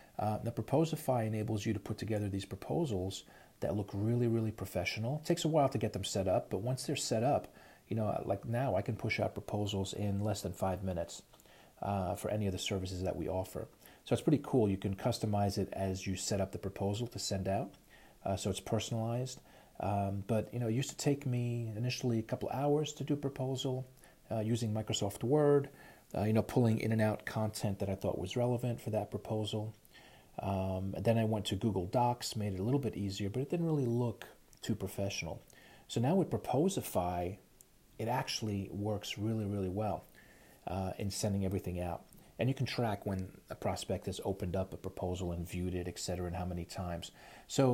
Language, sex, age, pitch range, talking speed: English, male, 40-59, 95-115 Hz, 210 wpm